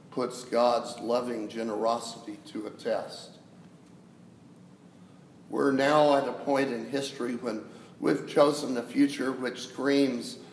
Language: English